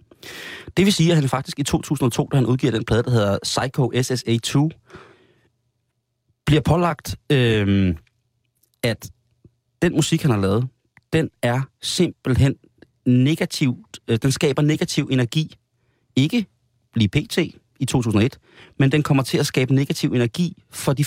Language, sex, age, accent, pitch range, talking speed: Danish, male, 30-49, native, 115-150 Hz, 140 wpm